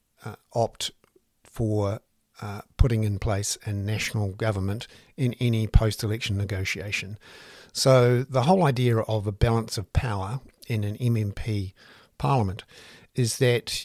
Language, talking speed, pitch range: English, 125 wpm, 105-120 Hz